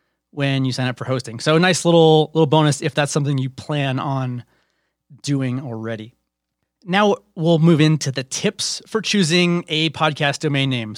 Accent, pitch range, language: American, 135-170 Hz, English